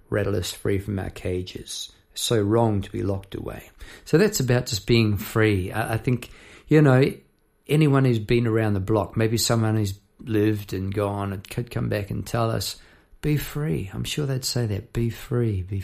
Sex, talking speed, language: male, 190 wpm, English